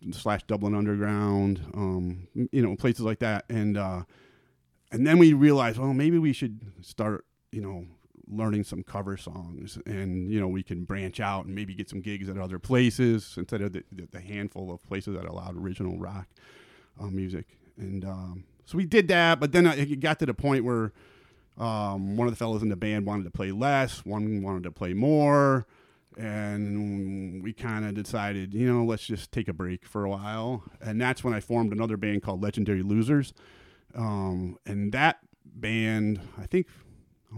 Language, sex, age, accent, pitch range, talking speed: English, male, 30-49, American, 100-125 Hz, 190 wpm